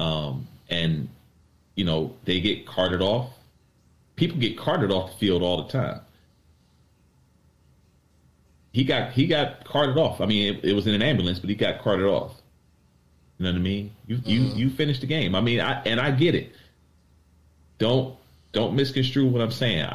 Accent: American